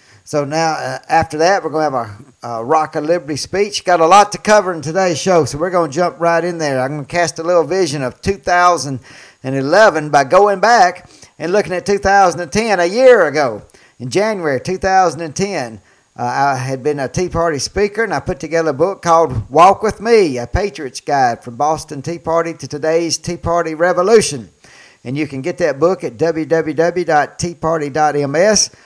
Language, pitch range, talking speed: English, 135-170 Hz, 190 wpm